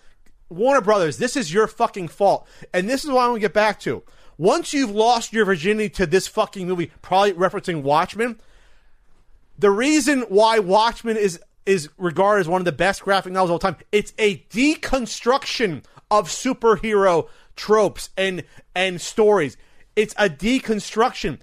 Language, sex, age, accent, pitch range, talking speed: English, male, 30-49, American, 180-225 Hz, 160 wpm